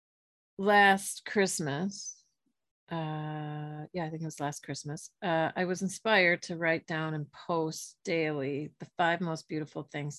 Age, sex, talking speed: 40-59, female, 145 wpm